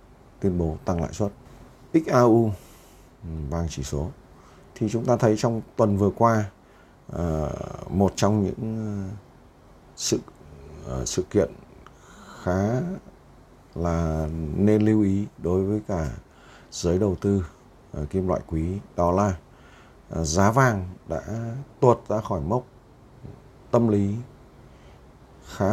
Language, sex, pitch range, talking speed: Vietnamese, male, 85-115 Hz, 115 wpm